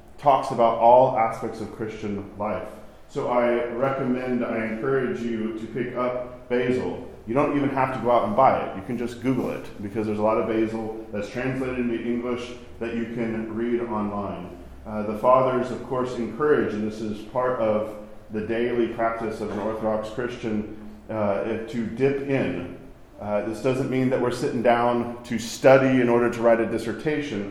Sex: male